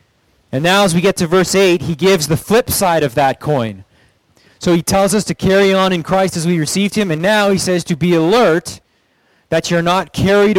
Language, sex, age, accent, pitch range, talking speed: English, male, 30-49, American, 140-180 Hz, 225 wpm